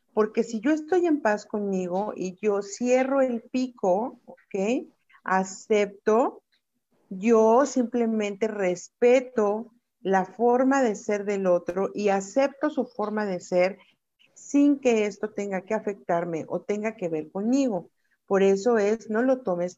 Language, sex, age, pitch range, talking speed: Spanish, female, 50-69, 190-245 Hz, 140 wpm